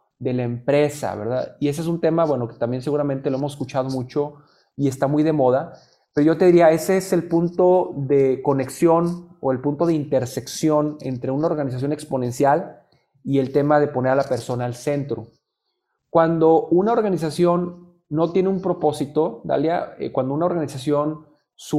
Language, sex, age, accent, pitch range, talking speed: Spanish, male, 30-49, Mexican, 135-165 Hz, 175 wpm